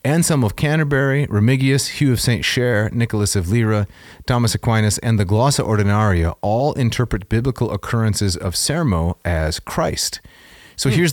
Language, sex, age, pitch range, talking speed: English, male, 30-49, 95-130 Hz, 150 wpm